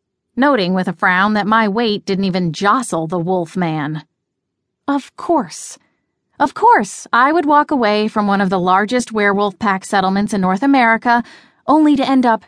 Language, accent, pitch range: English, American, 185-255 Hz